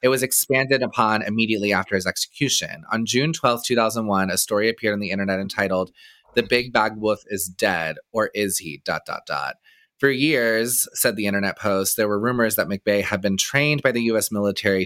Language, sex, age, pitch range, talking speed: English, male, 20-39, 95-120 Hz, 185 wpm